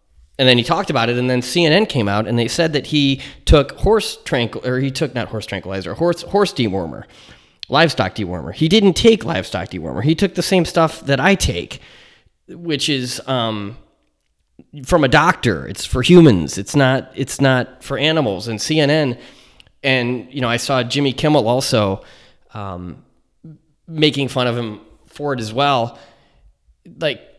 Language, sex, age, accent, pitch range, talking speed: English, male, 20-39, American, 110-150 Hz, 170 wpm